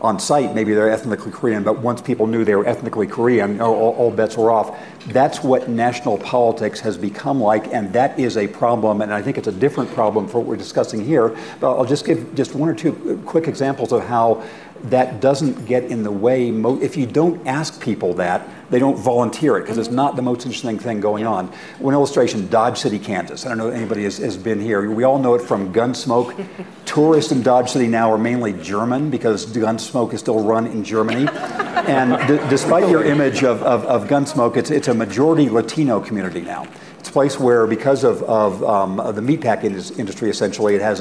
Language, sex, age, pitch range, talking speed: English, male, 50-69, 110-135 Hz, 210 wpm